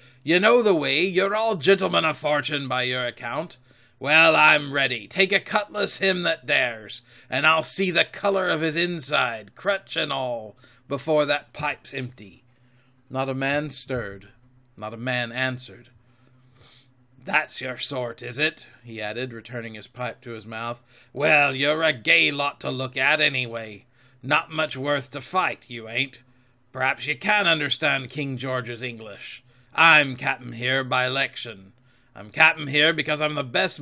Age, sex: 30-49, male